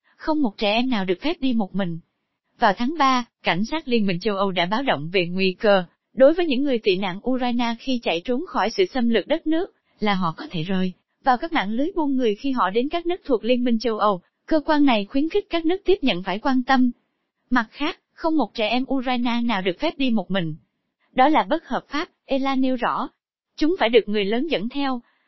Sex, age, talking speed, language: female, 20-39, 240 wpm, Vietnamese